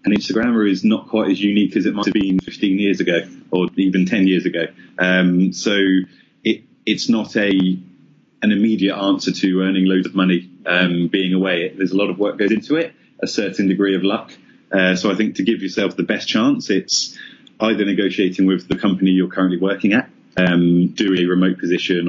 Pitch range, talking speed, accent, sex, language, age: 90-100 Hz, 210 wpm, British, male, English, 30-49